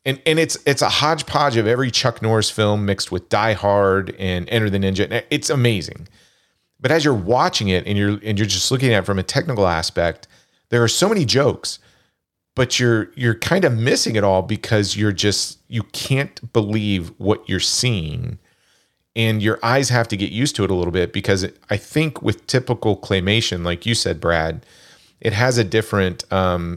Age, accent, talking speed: 40-59, American, 195 wpm